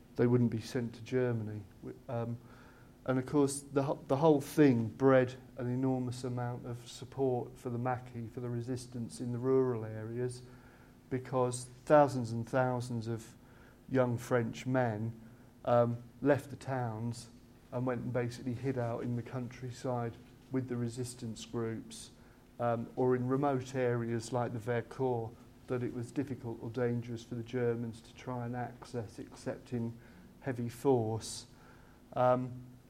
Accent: British